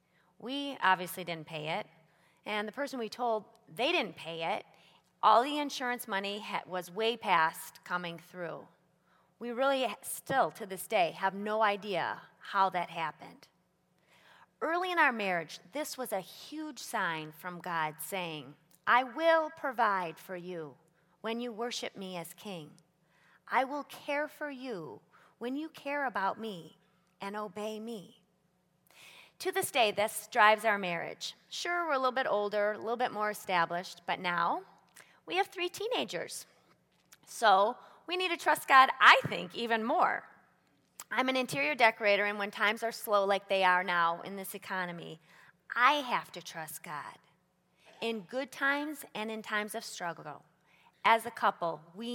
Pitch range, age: 175-240 Hz, 30-49